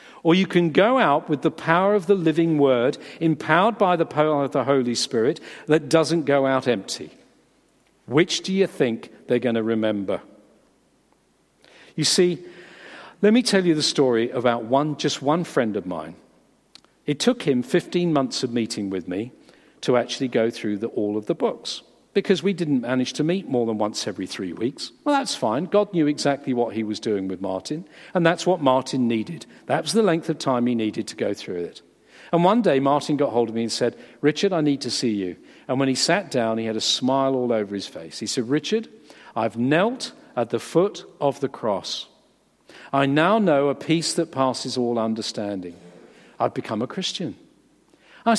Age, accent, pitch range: 50-69, British, 120-175 Hz